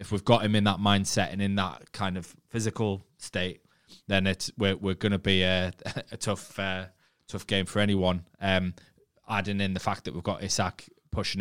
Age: 20-39